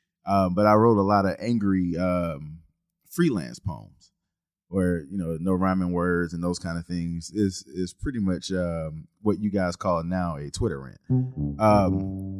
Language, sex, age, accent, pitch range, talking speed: English, male, 20-39, American, 90-115 Hz, 175 wpm